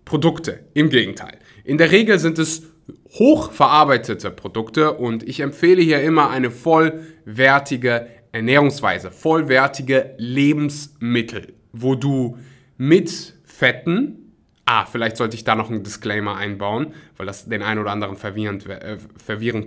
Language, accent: German, German